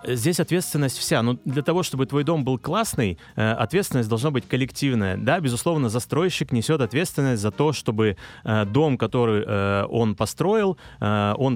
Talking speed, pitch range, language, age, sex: 145 wpm, 110-140 Hz, Russian, 30-49, male